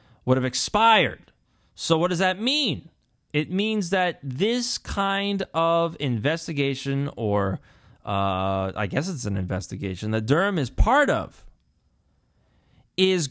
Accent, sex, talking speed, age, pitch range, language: American, male, 125 wpm, 30-49, 115-170 Hz, English